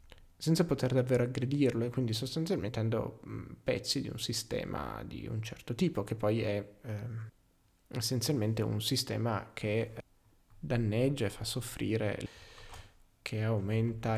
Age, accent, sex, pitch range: 20-39, native, male, 105-130 Hz